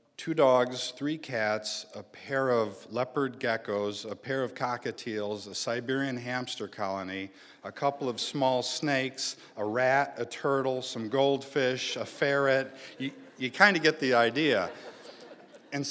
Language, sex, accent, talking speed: English, male, American, 140 wpm